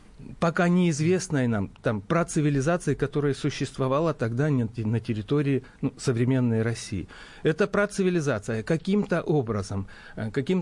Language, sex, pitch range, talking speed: Russian, male, 110-150 Hz, 120 wpm